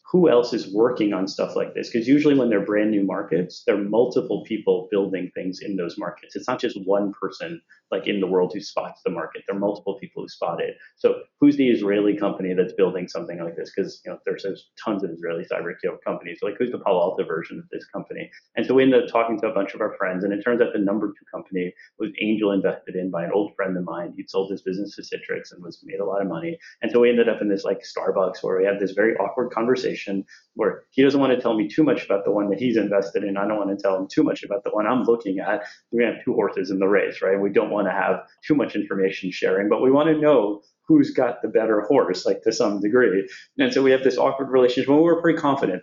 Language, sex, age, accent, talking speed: English, male, 30-49, American, 265 wpm